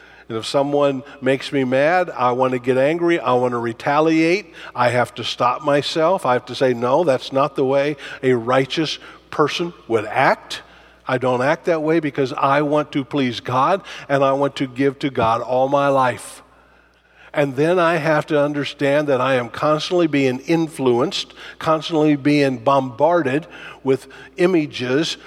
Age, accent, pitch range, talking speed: 50-69, American, 125-155 Hz, 170 wpm